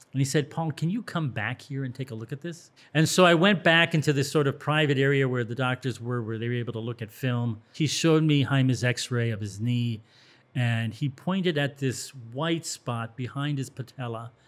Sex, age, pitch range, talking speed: male, 40-59, 120-150 Hz, 230 wpm